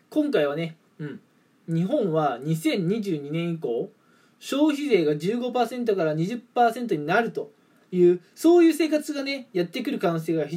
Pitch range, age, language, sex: 155-220 Hz, 20-39, Japanese, male